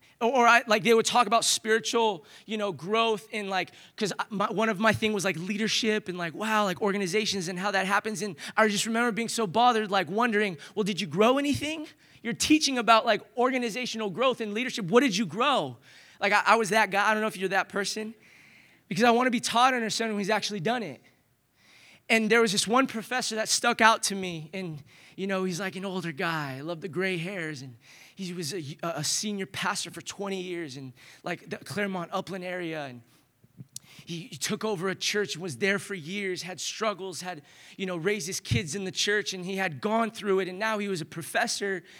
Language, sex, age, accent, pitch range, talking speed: English, male, 20-39, American, 185-225 Hz, 220 wpm